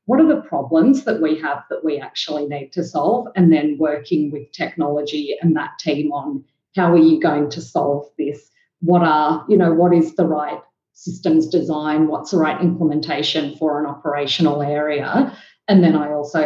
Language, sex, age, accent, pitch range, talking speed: English, female, 40-59, Australian, 150-180 Hz, 185 wpm